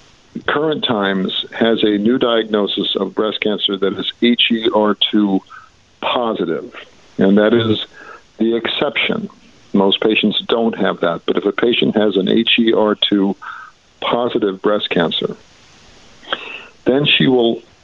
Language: English